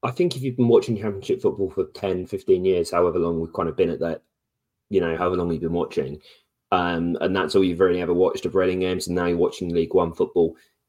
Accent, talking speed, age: British, 250 wpm, 30-49